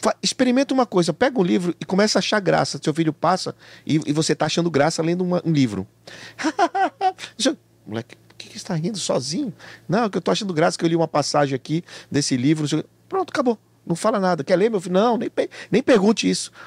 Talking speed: 210 wpm